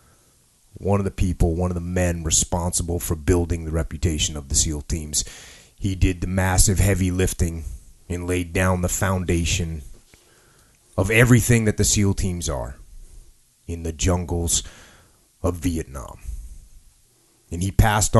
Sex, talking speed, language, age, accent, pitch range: male, 140 wpm, English, 30-49, American, 85-105 Hz